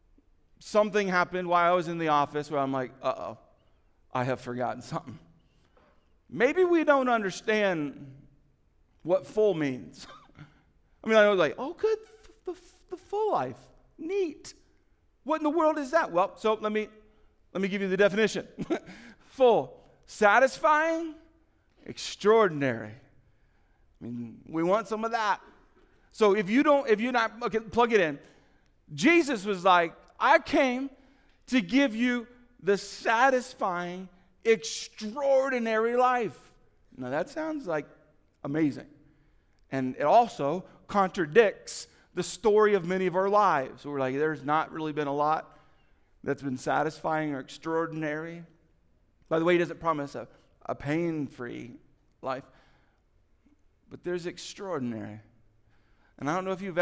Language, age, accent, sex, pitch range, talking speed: English, 50-69, American, male, 145-240 Hz, 140 wpm